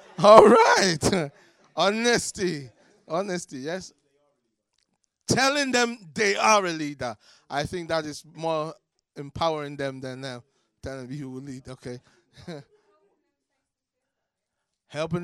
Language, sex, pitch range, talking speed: English, male, 145-195 Hz, 100 wpm